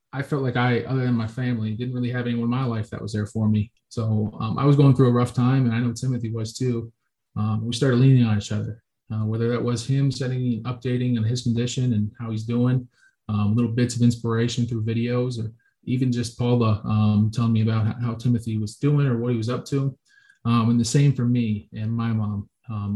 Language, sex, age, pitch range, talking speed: English, male, 20-39, 115-125 Hz, 240 wpm